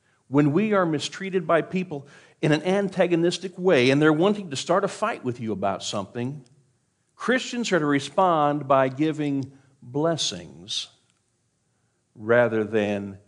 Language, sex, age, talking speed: English, male, 50-69, 135 wpm